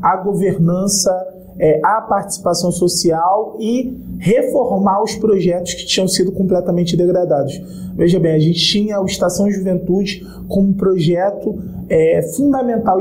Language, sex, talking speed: Portuguese, male, 130 wpm